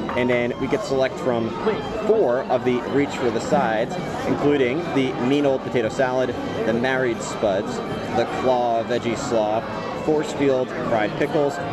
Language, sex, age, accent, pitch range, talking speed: English, male, 30-49, American, 115-140 Hz, 155 wpm